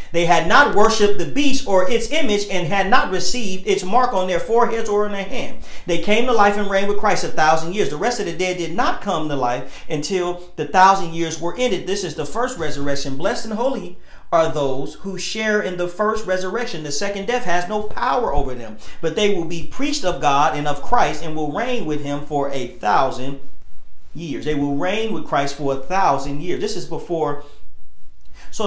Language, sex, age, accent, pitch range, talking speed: English, male, 40-59, American, 155-205 Hz, 220 wpm